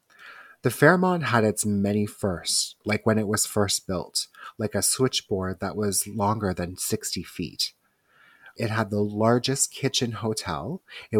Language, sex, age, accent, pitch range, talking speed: English, male, 30-49, American, 100-120 Hz, 150 wpm